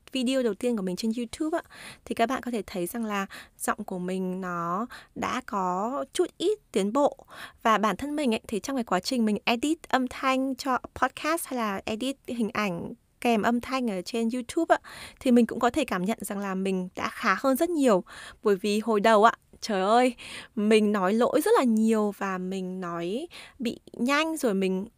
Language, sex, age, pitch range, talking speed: Vietnamese, female, 20-39, 195-260 Hz, 205 wpm